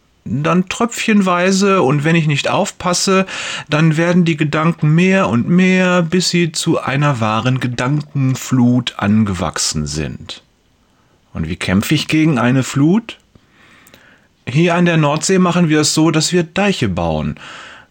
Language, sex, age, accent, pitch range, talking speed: German, male, 30-49, German, 110-165 Hz, 135 wpm